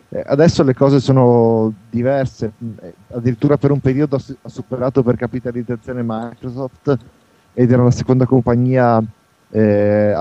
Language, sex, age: Italian, male, 30-49